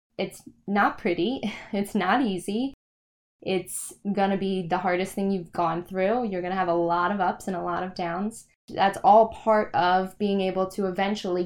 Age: 10-29